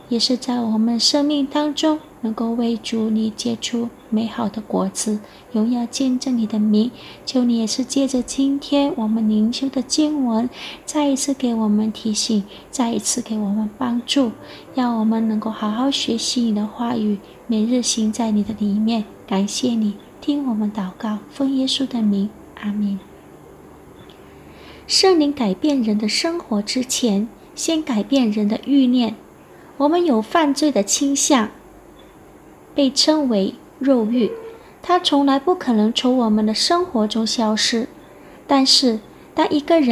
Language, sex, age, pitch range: Indonesian, female, 30-49, 220-290 Hz